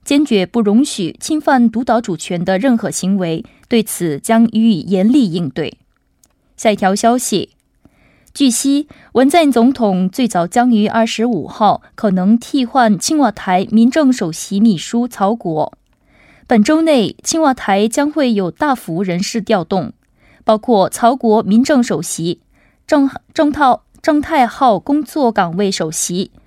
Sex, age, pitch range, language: female, 20-39, 195-270 Hz, Korean